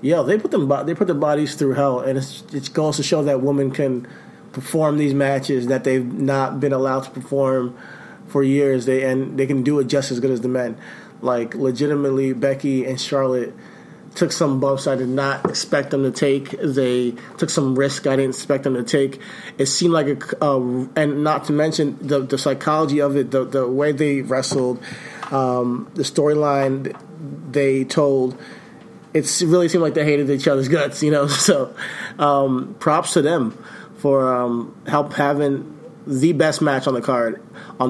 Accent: American